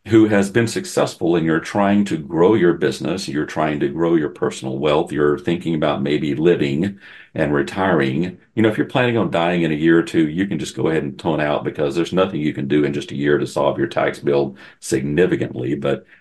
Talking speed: 230 wpm